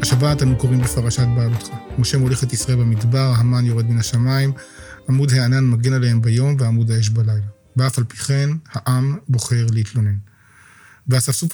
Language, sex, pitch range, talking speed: Hebrew, male, 120-135 Hz, 155 wpm